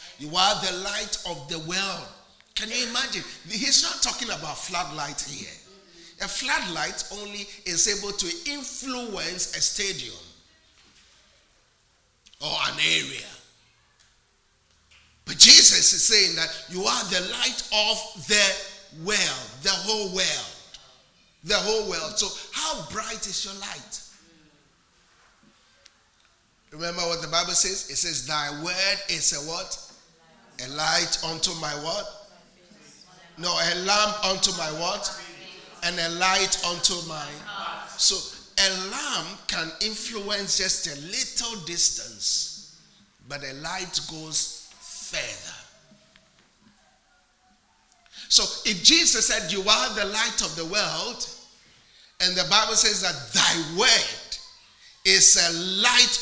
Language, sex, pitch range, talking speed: English, male, 165-210 Hz, 125 wpm